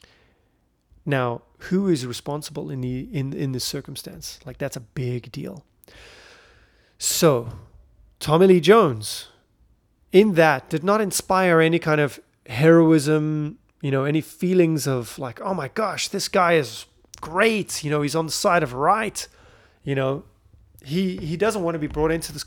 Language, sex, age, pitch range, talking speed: English, male, 30-49, 135-175 Hz, 160 wpm